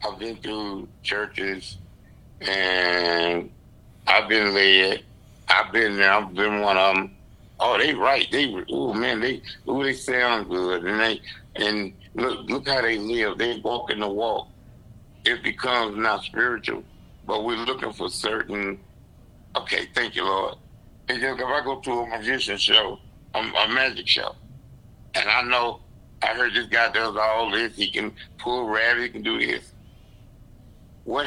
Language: English